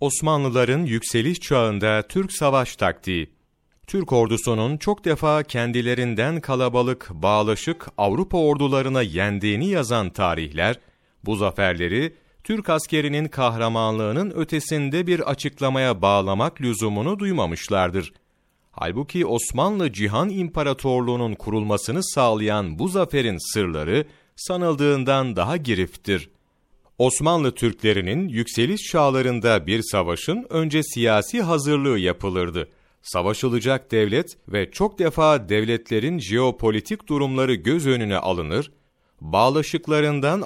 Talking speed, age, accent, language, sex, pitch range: 95 wpm, 40-59, native, Turkish, male, 105-155 Hz